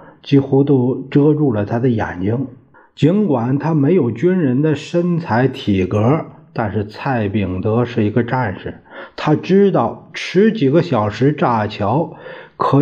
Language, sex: Chinese, male